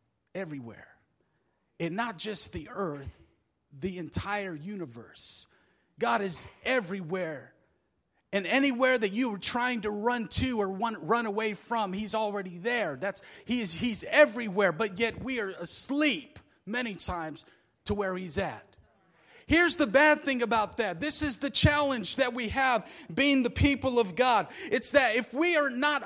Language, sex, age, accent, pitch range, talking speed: English, male, 40-59, American, 200-285 Hz, 155 wpm